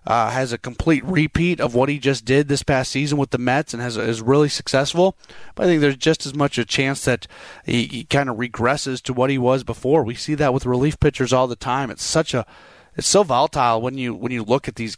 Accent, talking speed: American, 250 wpm